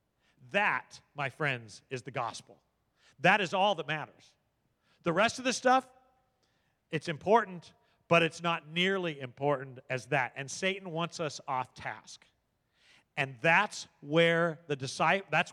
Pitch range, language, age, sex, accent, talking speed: 150-220 Hz, English, 40-59, male, American, 140 wpm